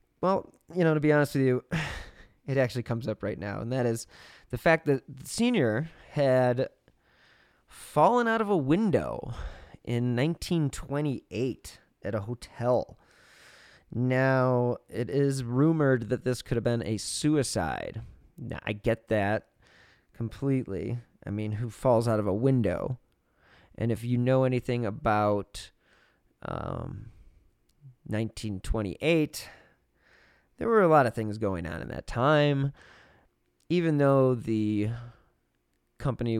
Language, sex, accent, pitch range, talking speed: English, male, American, 105-135 Hz, 130 wpm